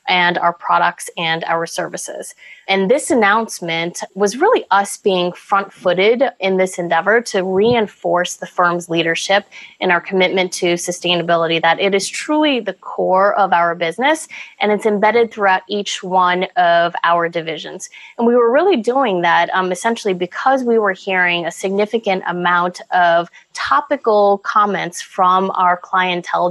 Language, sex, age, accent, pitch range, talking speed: English, female, 20-39, American, 180-215 Hz, 150 wpm